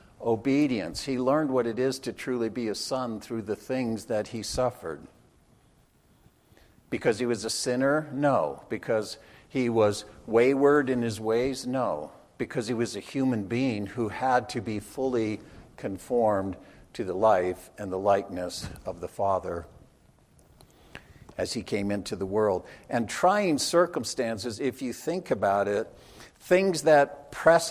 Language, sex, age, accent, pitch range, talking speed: English, male, 60-79, American, 110-135 Hz, 150 wpm